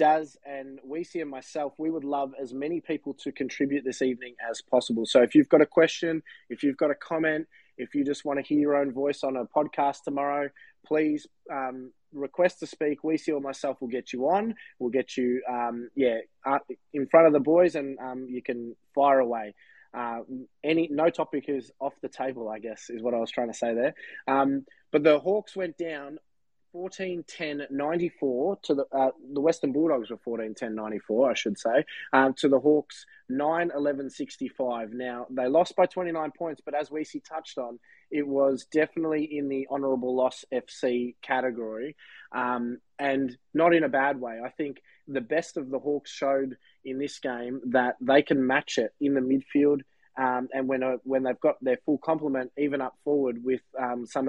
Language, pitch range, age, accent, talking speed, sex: English, 130-155 Hz, 20-39, Australian, 200 wpm, male